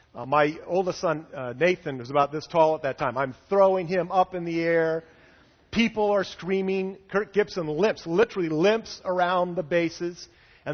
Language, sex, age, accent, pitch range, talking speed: English, male, 40-59, American, 130-180 Hz, 180 wpm